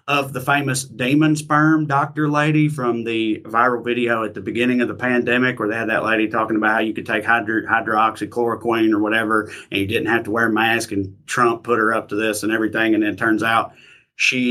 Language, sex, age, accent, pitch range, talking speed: English, male, 30-49, American, 105-125 Hz, 225 wpm